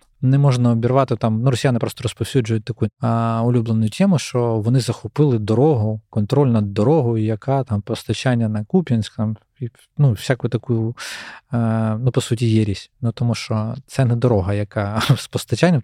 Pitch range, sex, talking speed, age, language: 110-130 Hz, male, 160 wpm, 20-39, Ukrainian